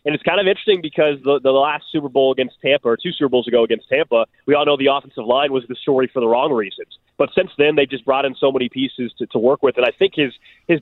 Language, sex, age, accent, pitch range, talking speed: English, male, 20-39, American, 125-155 Hz, 295 wpm